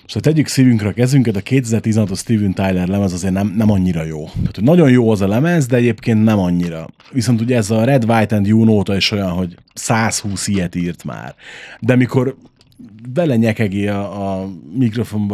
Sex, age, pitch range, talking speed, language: male, 30-49, 95-125 Hz, 195 wpm, Hungarian